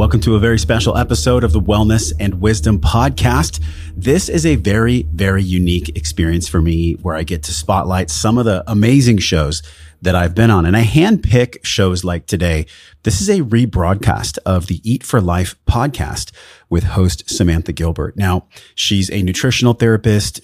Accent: American